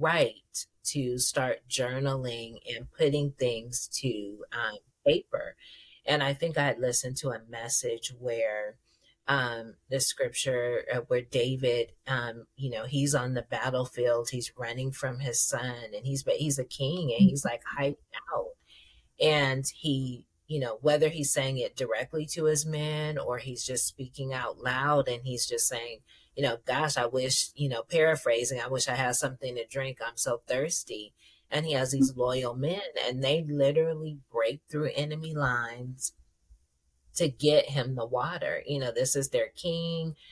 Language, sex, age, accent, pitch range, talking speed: English, female, 30-49, American, 125-150 Hz, 170 wpm